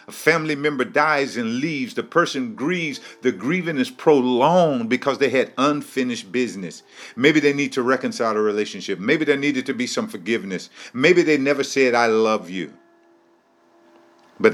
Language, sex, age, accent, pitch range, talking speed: English, male, 50-69, American, 105-170 Hz, 160 wpm